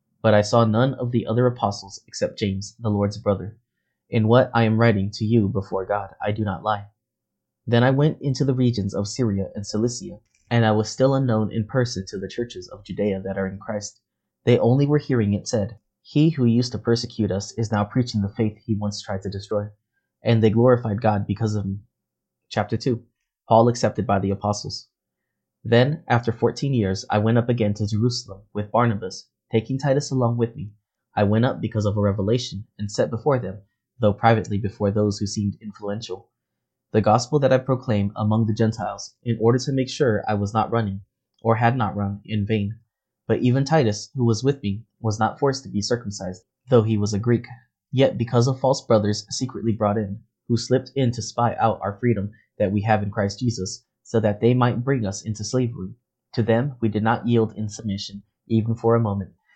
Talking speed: 210 wpm